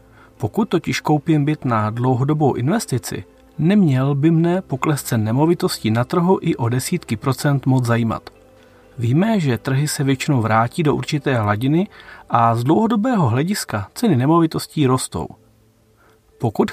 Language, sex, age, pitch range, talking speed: Czech, male, 40-59, 115-175 Hz, 135 wpm